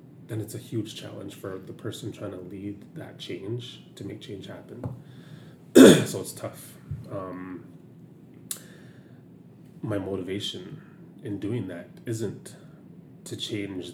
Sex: male